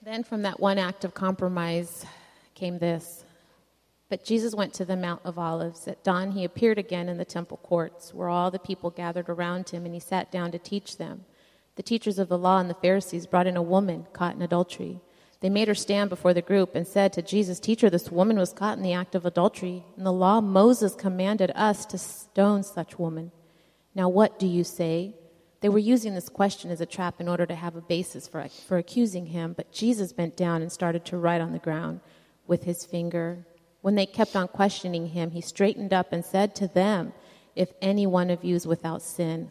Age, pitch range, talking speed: 30-49, 170-195 Hz, 220 wpm